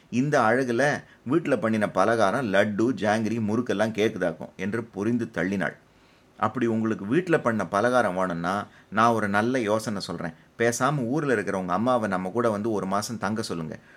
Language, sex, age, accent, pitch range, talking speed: Tamil, male, 30-49, native, 100-125 Hz, 145 wpm